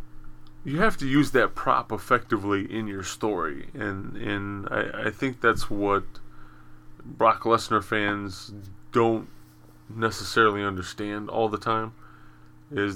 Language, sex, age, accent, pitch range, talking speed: English, male, 30-49, American, 85-115 Hz, 125 wpm